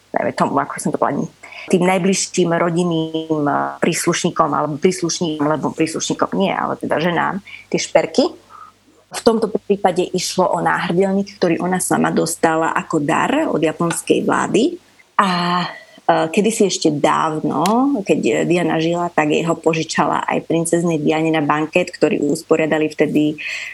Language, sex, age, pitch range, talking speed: Slovak, female, 30-49, 160-180 Hz, 115 wpm